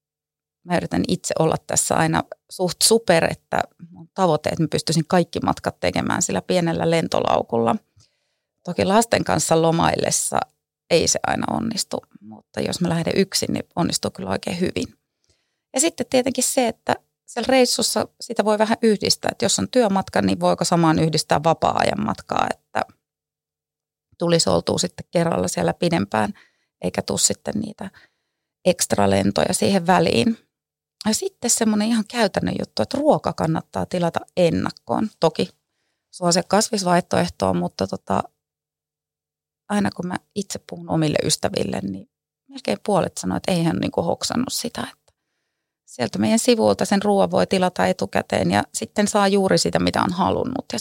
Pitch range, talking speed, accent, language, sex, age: 160-215 Hz, 150 wpm, native, Finnish, female, 30-49